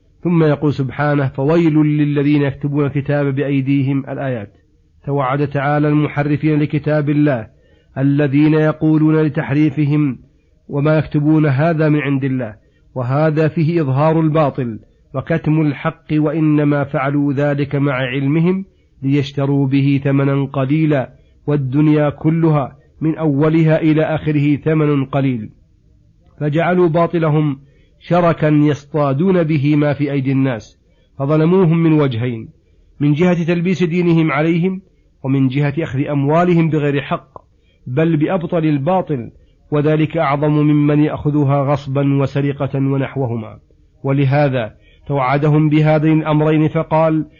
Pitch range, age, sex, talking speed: 140-155 Hz, 40-59, male, 105 wpm